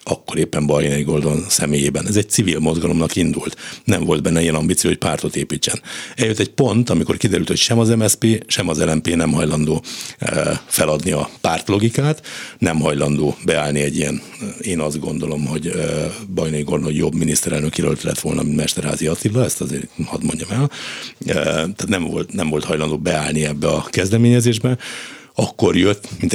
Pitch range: 80-95 Hz